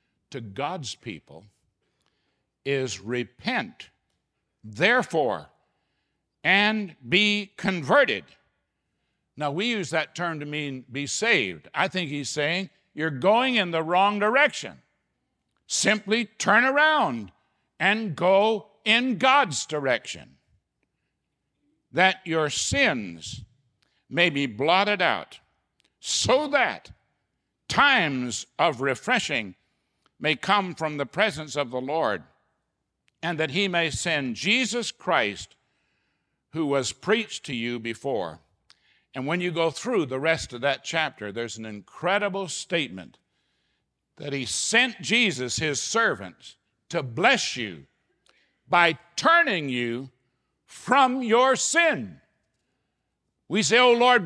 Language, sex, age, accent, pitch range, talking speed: English, male, 60-79, American, 130-210 Hz, 115 wpm